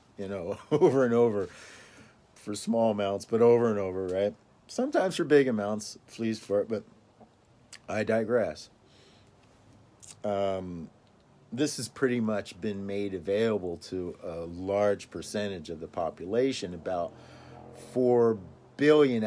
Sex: male